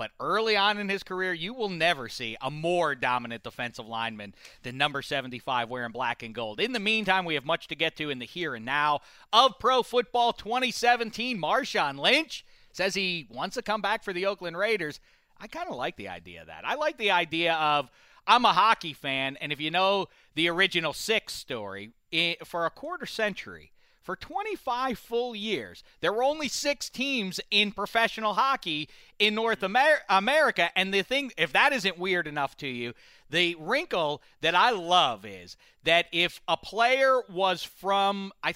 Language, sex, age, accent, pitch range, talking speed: English, male, 40-59, American, 160-220 Hz, 185 wpm